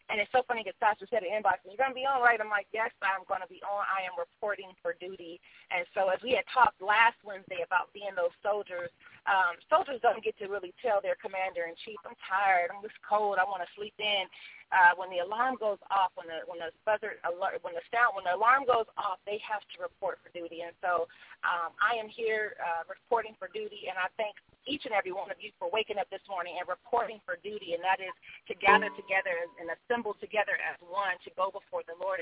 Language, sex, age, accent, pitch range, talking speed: English, female, 30-49, American, 180-230 Hz, 240 wpm